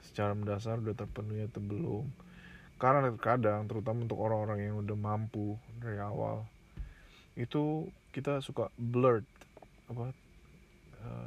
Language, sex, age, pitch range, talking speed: Indonesian, male, 20-39, 110-130 Hz, 115 wpm